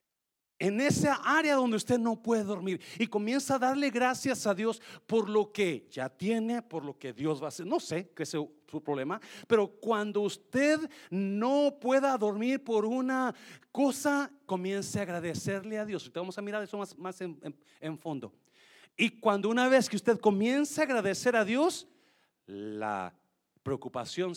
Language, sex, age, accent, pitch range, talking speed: Spanish, male, 50-69, Mexican, 135-225 Hz, 175 wpm